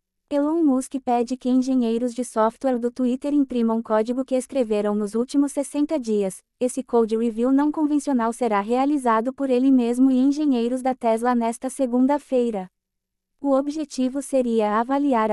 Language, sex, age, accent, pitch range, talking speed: Portuguese, female, 20-39, Brazilian, 230-275 Hz, 145 wpm